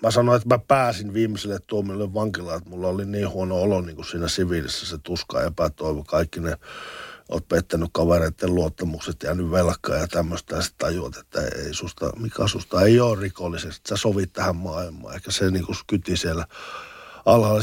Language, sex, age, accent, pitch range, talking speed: Finnish, male, 60-79, native, 90-115 Hz, 180 wpm